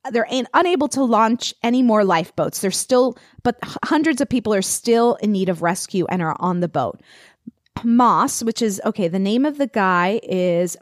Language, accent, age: English, American, 30-49